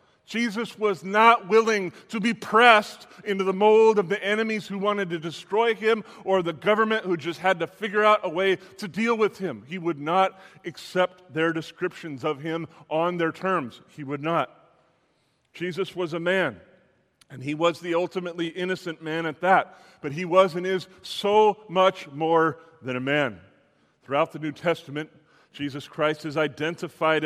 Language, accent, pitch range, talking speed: English, American, 150-190 Hz, 175 wpm